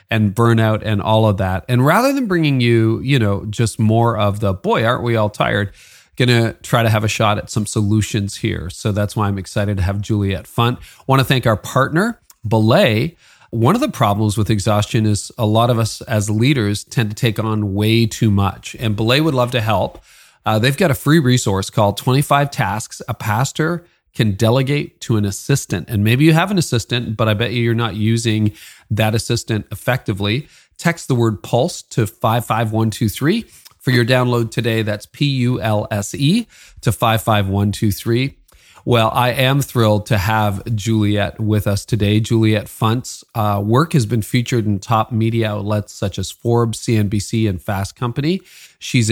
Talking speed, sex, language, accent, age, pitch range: 180 wpm, male, English, American, 40-59, 105-125 Hz